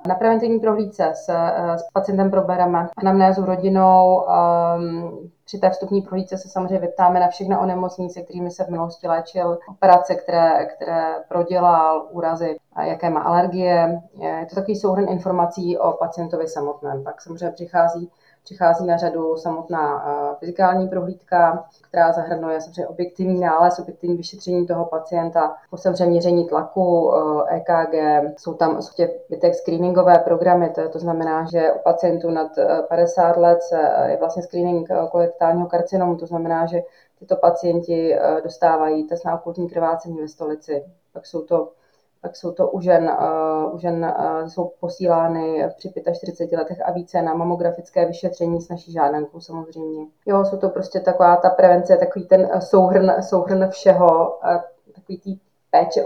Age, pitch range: 30-49, 165-185 Hz